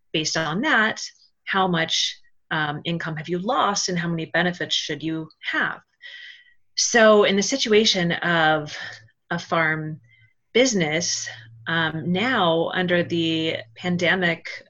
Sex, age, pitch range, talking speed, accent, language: female, 30-49, 165-210 Hz, 125 wpm, American, English